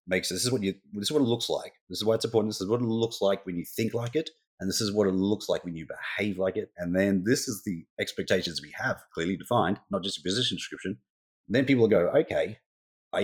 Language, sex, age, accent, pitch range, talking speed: English, male, 30-49, Australian, 85-115 Hz, 275 wpm